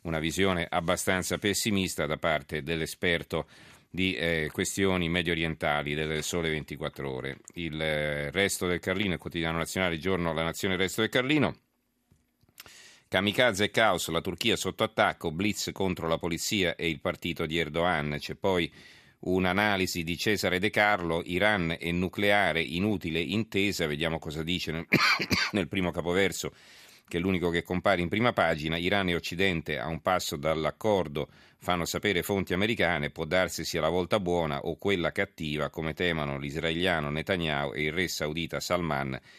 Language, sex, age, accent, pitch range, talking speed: Italian, male, 40-59, native, 80-95 Hz, 155 wpm